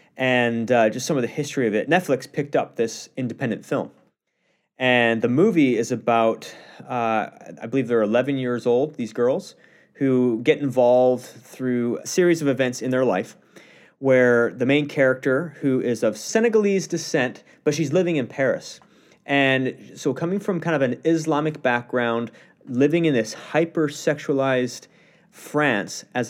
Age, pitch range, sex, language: 30-49, 115-140 Hz, male, English